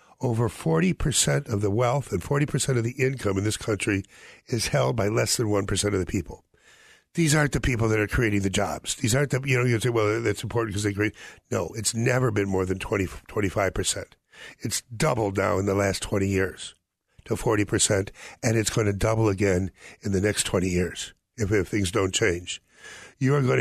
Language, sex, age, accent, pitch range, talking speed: English, male, 60-79, American, 100-140 Hz, 205 wpm